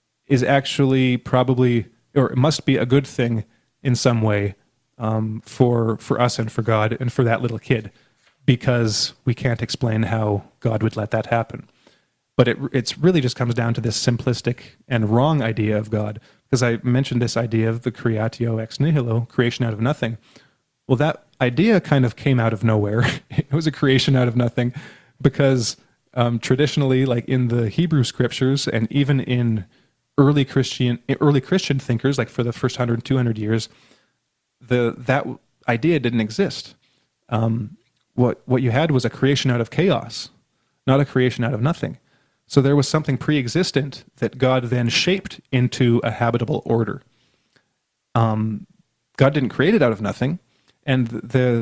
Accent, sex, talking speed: American, male, 170 wpm